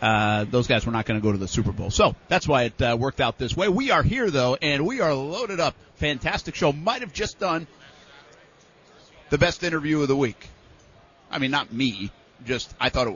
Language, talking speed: English, 230 wpm